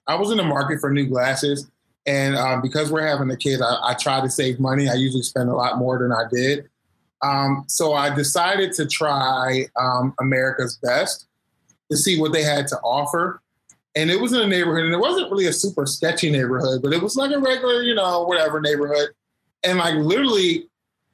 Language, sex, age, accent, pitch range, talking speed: English, male, 20-39, American, 145-210 Hz, 205 wpm